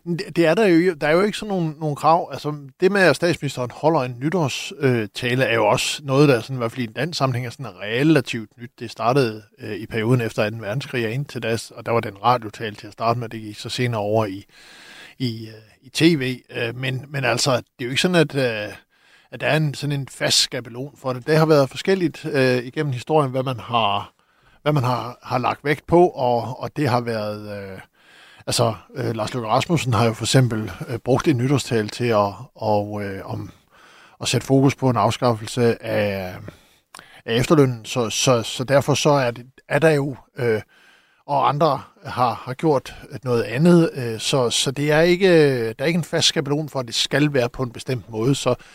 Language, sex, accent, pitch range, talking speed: Danish, male, native, 115-150 Hz, 215 wpm